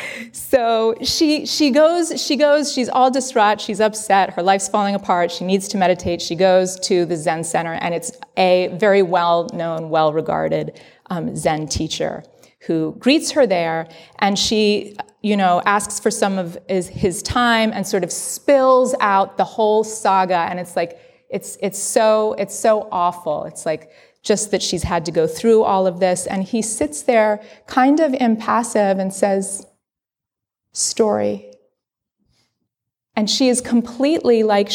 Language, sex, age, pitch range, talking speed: English, female, 30-49, 180-235 Hz, 160 wpm